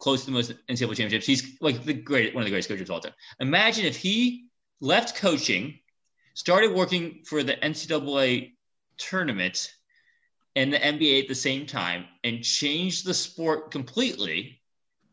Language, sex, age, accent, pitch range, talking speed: English, male, 30-49, American, 115-165 Hz, 165 wpm